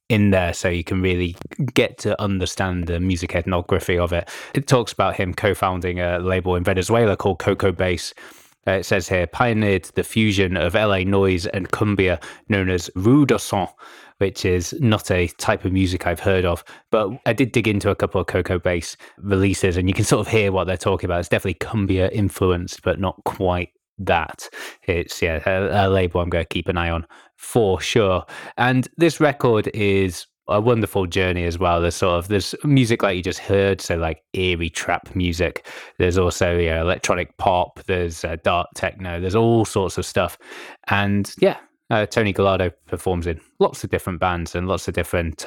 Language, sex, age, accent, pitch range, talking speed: English, male, 20-39, British, 90-100 Hz, 195 wpm